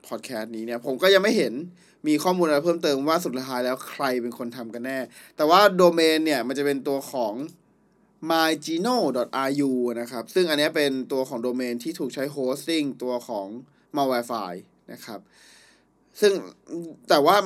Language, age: Thai, 20-39